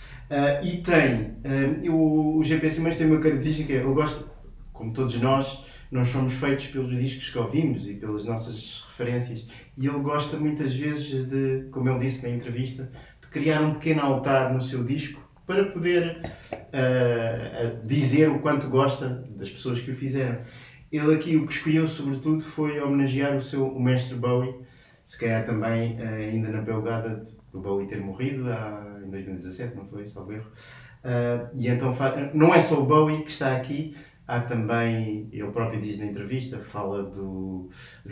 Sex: male